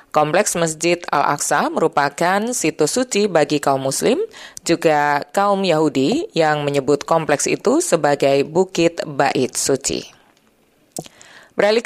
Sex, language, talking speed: female, Indonesian, 105 wpm